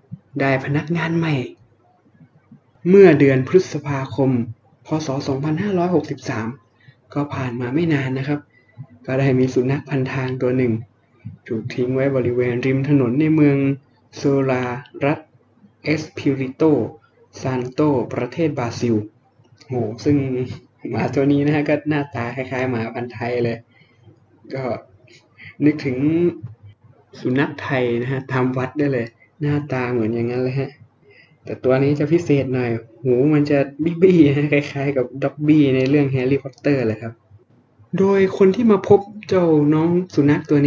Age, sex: 20-39, male